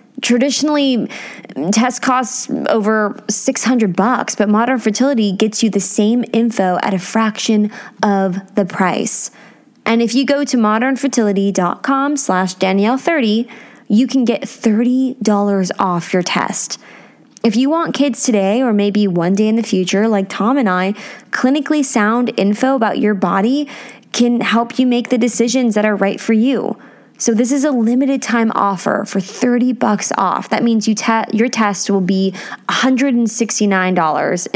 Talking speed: 155 wpm